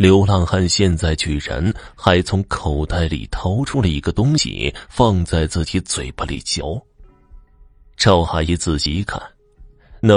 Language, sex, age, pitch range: Chinese, male, 30-49, 85-125 Hz